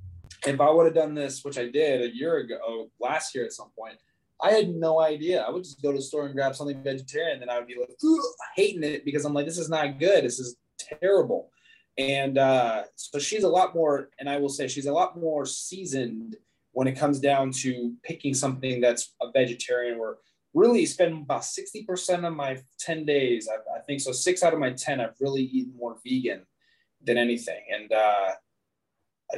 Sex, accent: male, American